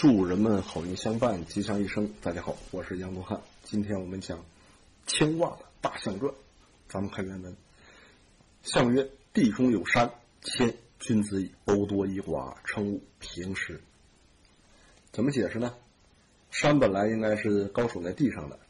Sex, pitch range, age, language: male, 90-110 Hz, 50-69, Chinese